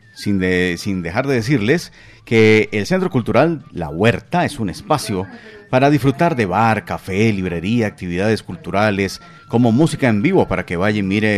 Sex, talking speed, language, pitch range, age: male, 170 wpm, Spanish, 100-145 Hz, 40-59